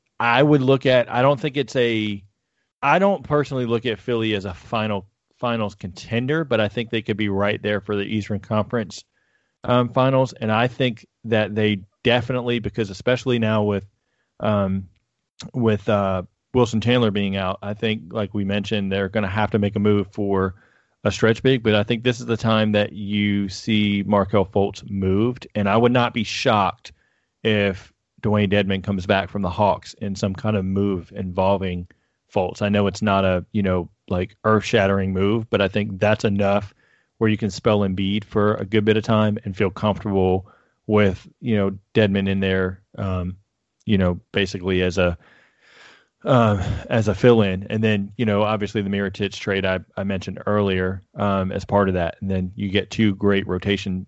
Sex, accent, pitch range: male, American, 95-110 Hz